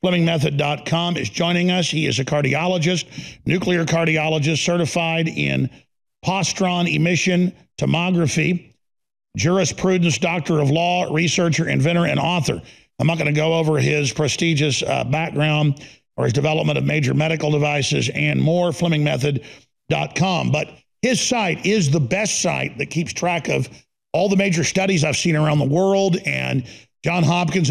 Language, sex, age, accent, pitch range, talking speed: English, male, 50-69, American, 150-175 Hz, 145 wpm